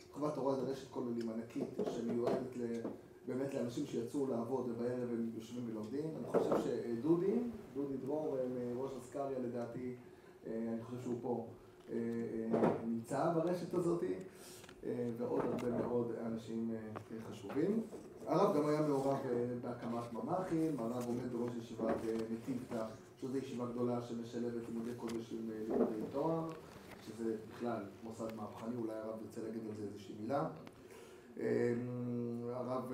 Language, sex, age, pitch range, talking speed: Hebrew, male, 30-49, 115-145 Hz, 125 wpm